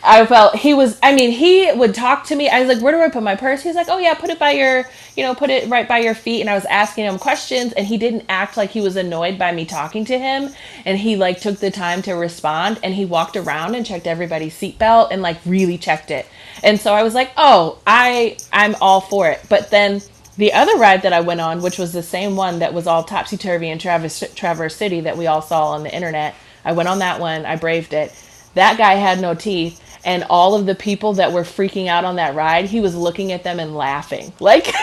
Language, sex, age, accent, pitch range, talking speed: English, female, 30-49, American, 165-220 Hz, 255 wpm